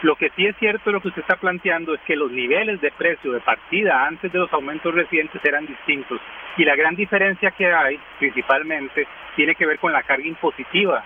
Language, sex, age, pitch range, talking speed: Spanish, male, 40-59, 145-185 Hz, 215 wpm